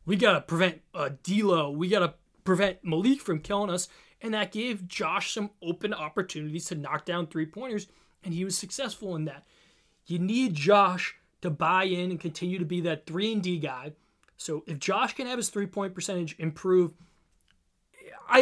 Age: 20-39